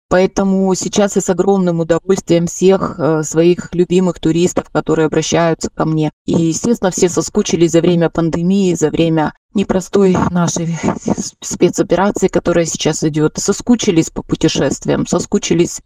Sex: female